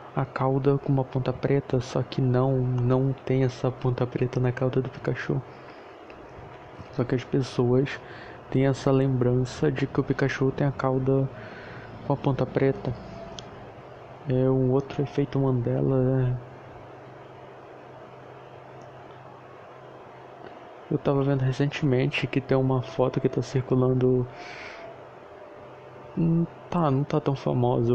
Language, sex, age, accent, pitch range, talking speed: Portuguese, male, 20-39, Brazilian, 130-140 Hz, 125 wpm